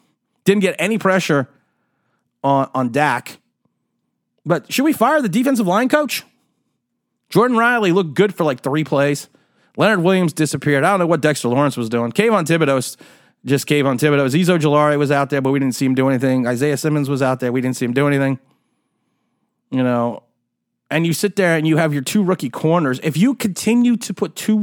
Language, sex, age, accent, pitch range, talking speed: English, male, 30-49, American, 140-190 Hz, 200 wpm